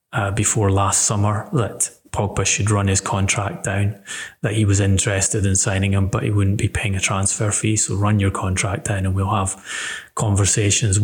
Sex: male